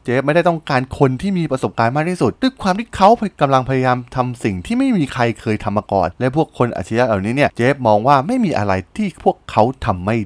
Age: 20-39